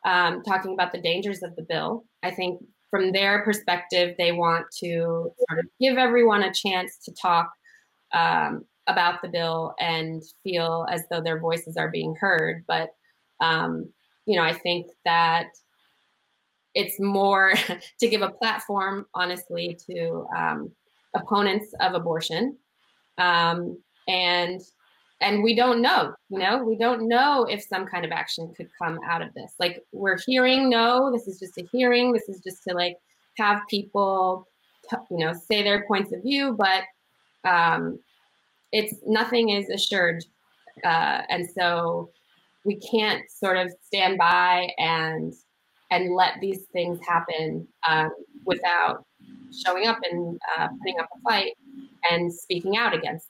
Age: 20-39